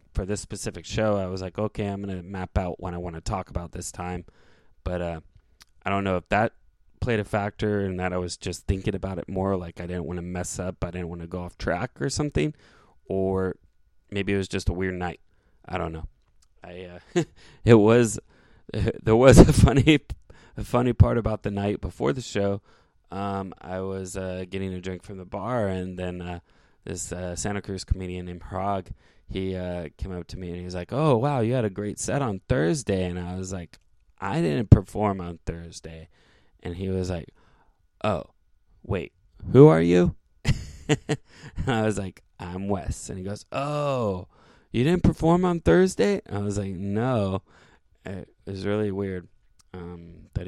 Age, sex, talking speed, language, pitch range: 20-39, male, 195 wpm, English, 90-105 Hz